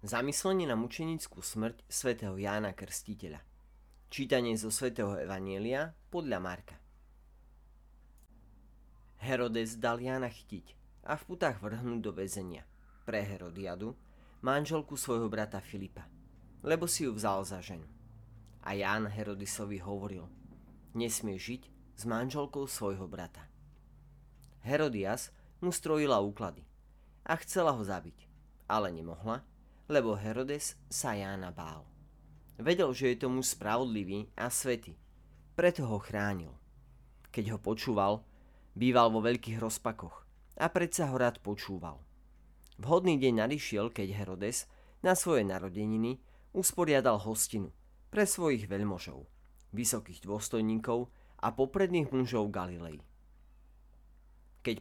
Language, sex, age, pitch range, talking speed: Slovak, male, 30-49, 95-125 Hz, 110 wpm